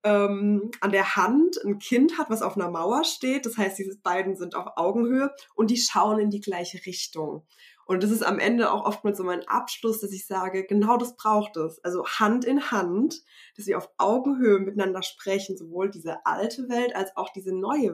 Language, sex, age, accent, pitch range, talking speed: German, female, 20-39, German, 185-225 Hz, 205 wpm